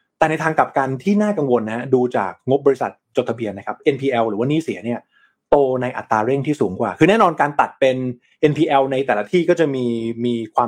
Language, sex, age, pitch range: Thai, male, 20-39, 120-150 Hz